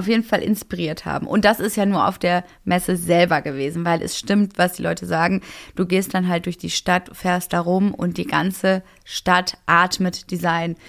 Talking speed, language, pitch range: 210 wpm, German, 170-195 Hz